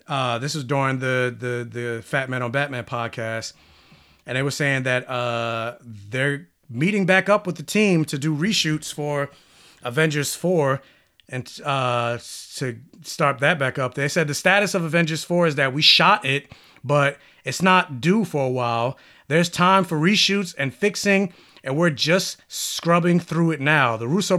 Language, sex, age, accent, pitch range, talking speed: English, male, 30-49, American, 130-170 Hz, 175 wpm